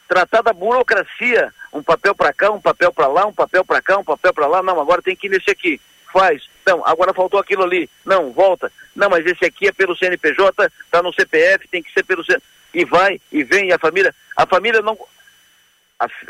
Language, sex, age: Portuguese, male, 50-69